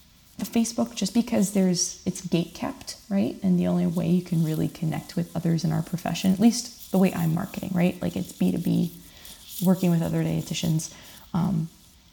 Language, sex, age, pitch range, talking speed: English, female, 20-39, 170-205 Hz, 185 wpm